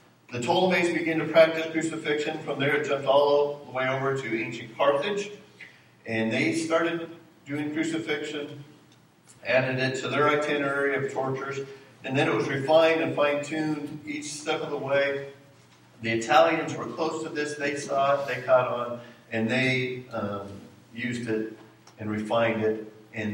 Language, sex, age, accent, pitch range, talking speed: English, male, 50-69, American, 115-155 Hz, 155 wpm